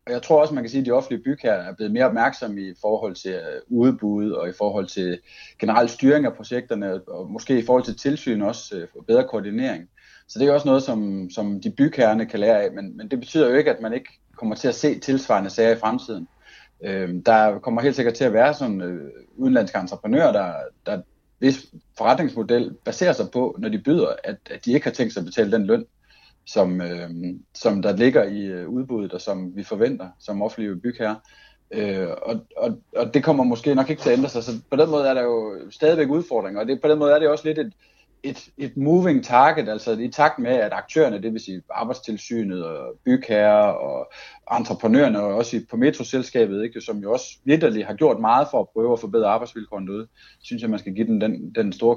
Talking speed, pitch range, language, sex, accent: 210 wpm, 105-145 Hz, Danish, male, native